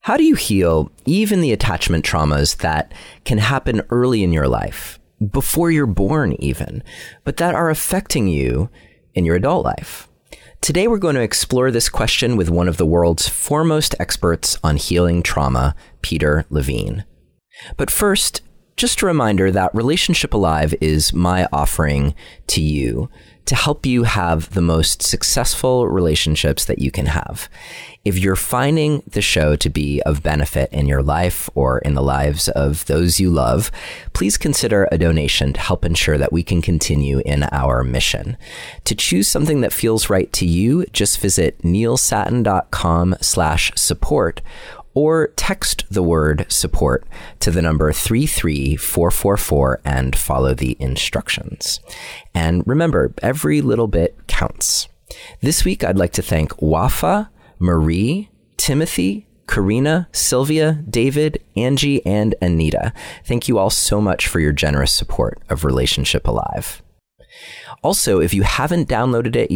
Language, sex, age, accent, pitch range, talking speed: English, male, 30-49, American, 75-120 Hz, 150 wpm